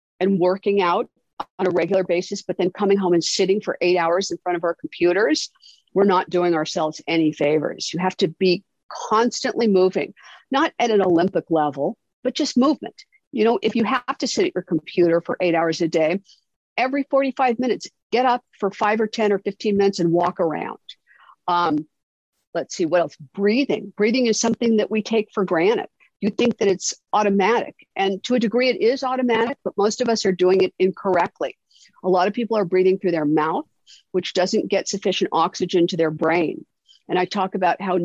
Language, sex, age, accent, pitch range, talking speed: English, female, 50-69, American, 175-220 Hz, 200 wpm